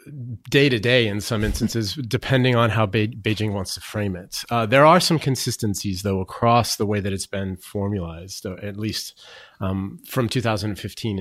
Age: 30-49